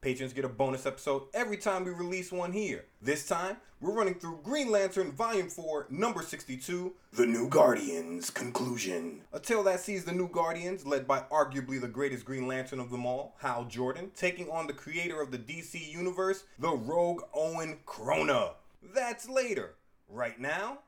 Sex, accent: male, American